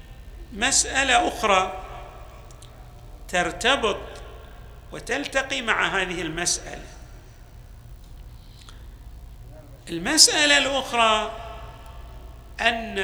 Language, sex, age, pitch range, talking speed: Arabic, male, 50-69, 140-205 Hz, 45 wpm